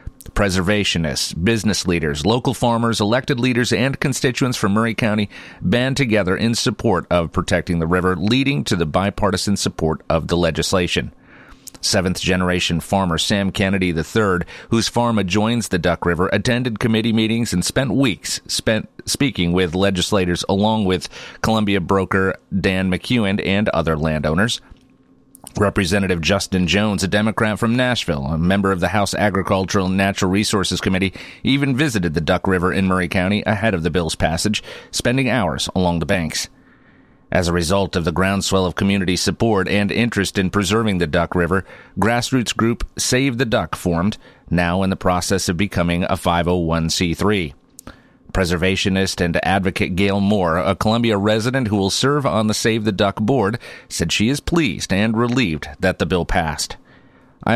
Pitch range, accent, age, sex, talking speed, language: 90-110 Hz, American, 40-59, male, 155 wpm, English